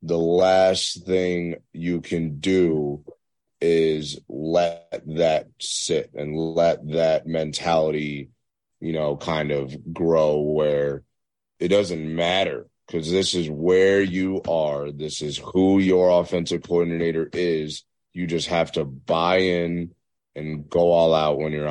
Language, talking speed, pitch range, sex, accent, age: English, 135 wpm, 75-85 Hz, male, American, 30-49